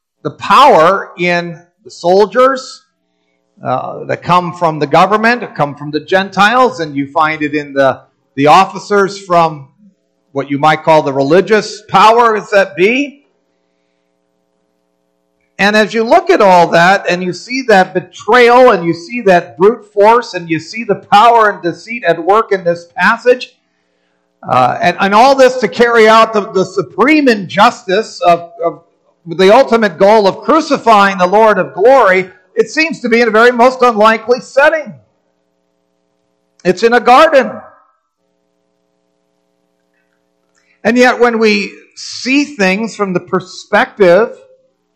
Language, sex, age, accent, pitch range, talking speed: English, male, 50-69, American, 155-225 Hz, 145 wpm